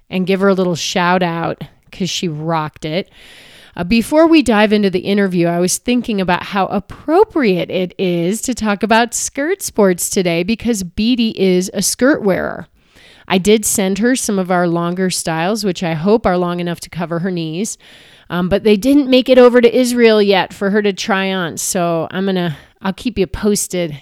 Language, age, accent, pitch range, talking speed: English, 30-49, American, 175-220 Hz, 195 wpm